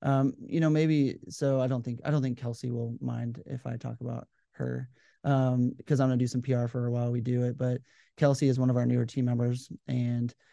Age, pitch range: 30-49, 125-135 Hz